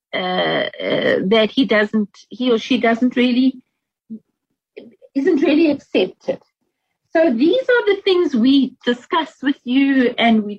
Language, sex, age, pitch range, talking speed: English, female, 50-69, 220-305 Hz, 135 wpm